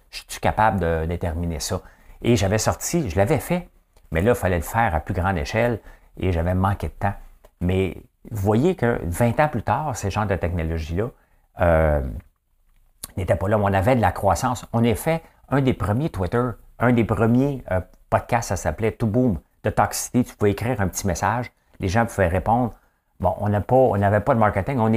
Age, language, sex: 60-79, English, male